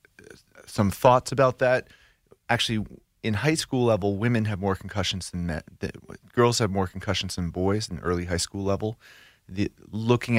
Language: English